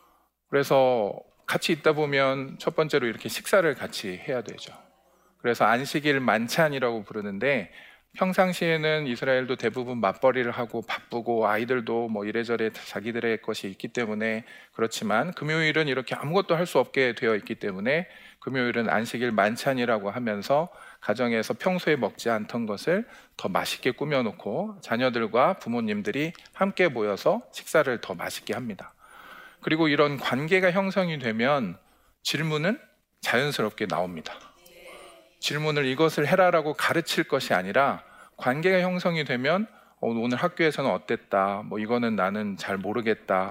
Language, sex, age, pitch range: Korean, male, 40-59, 115-160 Hz